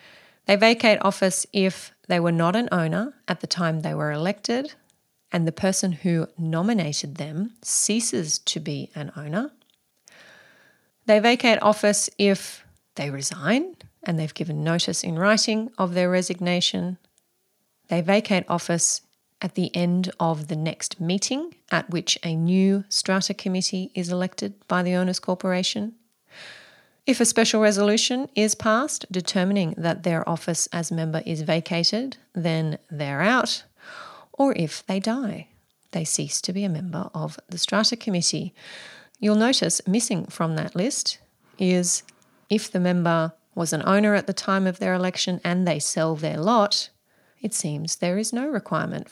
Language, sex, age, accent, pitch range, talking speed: English, female, 30-49, Australian, 165-210 Hz, 150 wpm